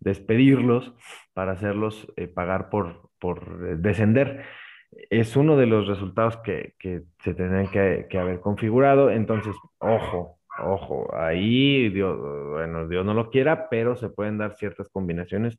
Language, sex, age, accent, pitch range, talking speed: Spanish, male, 30-49, Mexican, 95-115 Hz, 145 wpm